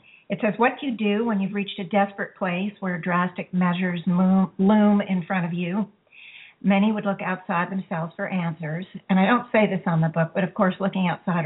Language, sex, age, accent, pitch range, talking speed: English, female, 50-69, American, 180-210 Hz, 210 wpm